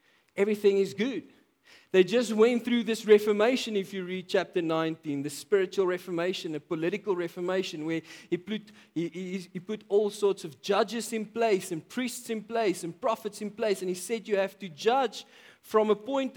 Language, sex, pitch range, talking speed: English, male, 160-210 Hz, 185 wpm